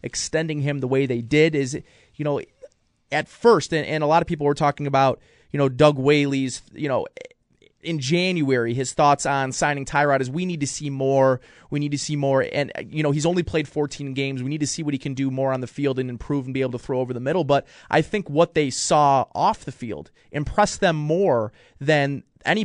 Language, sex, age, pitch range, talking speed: English, male, 30-49, 135-165 Hz, 235 wpm